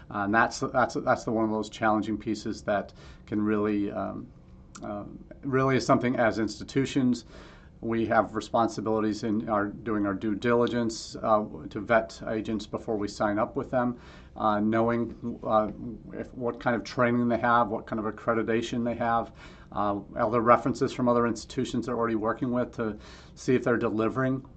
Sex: male